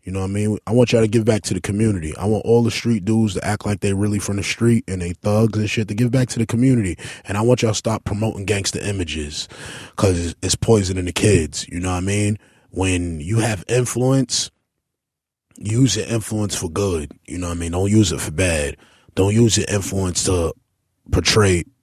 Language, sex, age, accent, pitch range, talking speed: English, male, 20-39, American, 95-135 Hz, 230 wpm